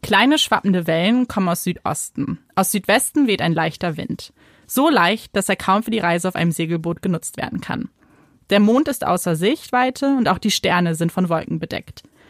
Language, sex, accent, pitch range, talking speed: German, female, German, 175-230 Hz, 190 wpm